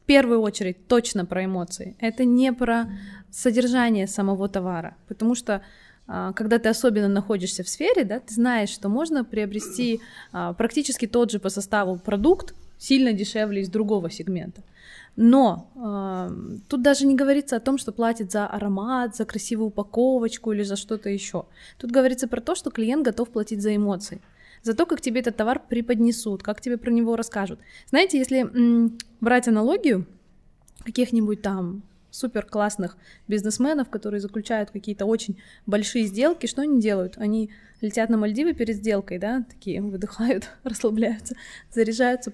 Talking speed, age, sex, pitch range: 145 wpm, 20-39, female, 205-245 Hz